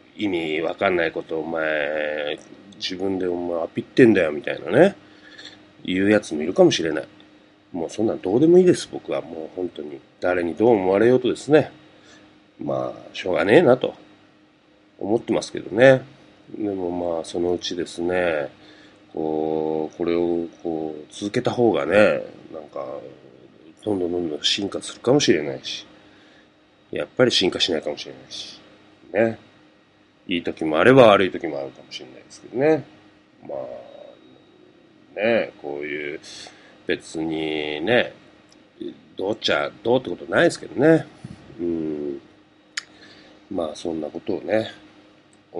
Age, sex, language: 30-49, male, Japanese